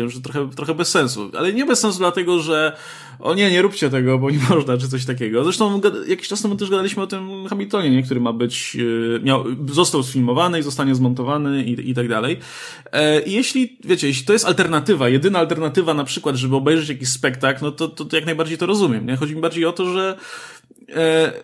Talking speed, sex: 215 wpm, male